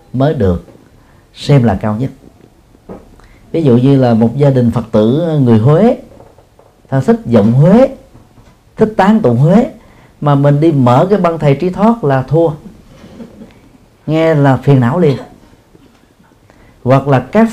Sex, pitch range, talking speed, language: male, 110-140 Hz, 150 wpm, Vietnamese